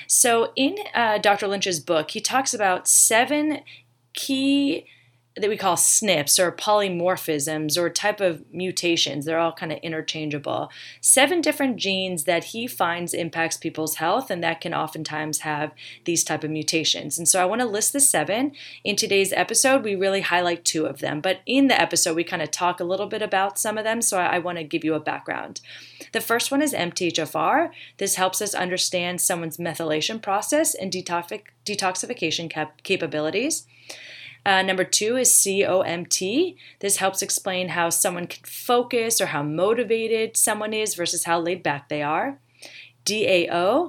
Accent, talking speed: American, 170 wpm